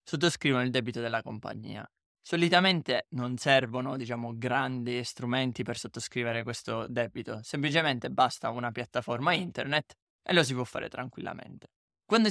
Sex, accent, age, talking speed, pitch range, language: male, native, 20-39, 130 wpm, 120-150 Hz, Italian